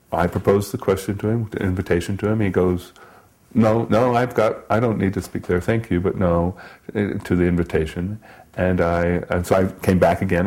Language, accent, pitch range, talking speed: English, American, 95-125 Hz, 210 wpm